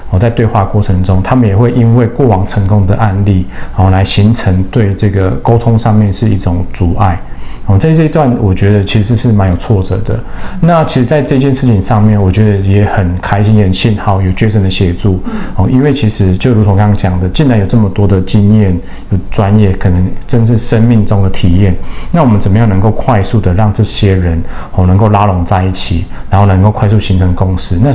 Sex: male